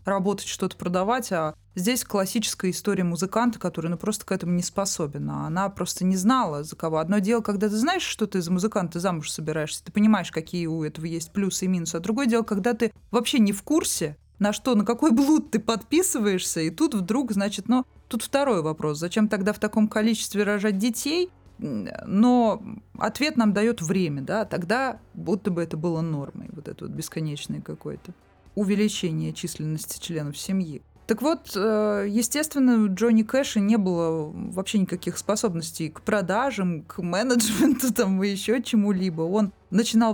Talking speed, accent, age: 170 wpm, native, 30-49